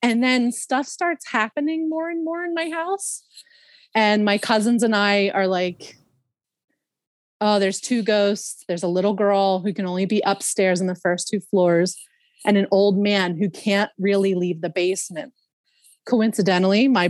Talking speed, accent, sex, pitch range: 170 wpm, American, female, 180-230 Hz